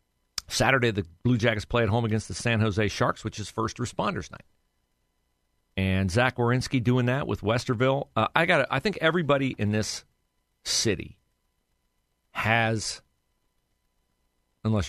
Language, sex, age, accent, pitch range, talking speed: English, male, 50-69, American, 90-115 Hz, 140 wpm